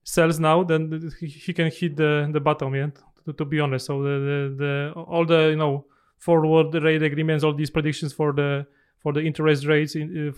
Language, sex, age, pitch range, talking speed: Polish, male, 30-49, 150-165 Hz, 210 wpm